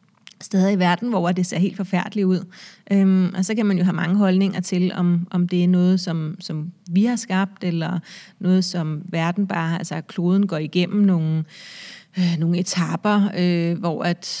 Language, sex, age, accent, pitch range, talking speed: Danish, female, 30-49, native, 180-205 Hz, 190 wpm